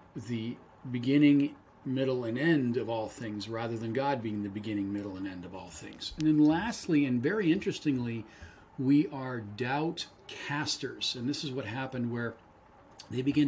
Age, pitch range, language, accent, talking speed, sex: 40-59, 115-145 Hz, English, American, 170 wpm, male